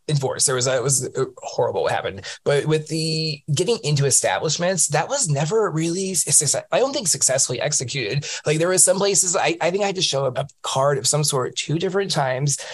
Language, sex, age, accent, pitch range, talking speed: English, male, 20-39, American, 135-165 Hz, 210 wpm